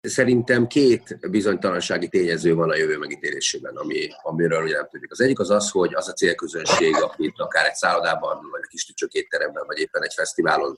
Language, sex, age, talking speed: Hungarian, male, 30-49, 180 wpm